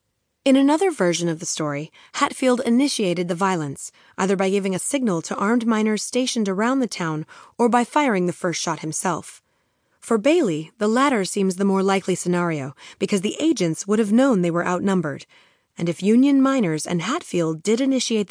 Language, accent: English, American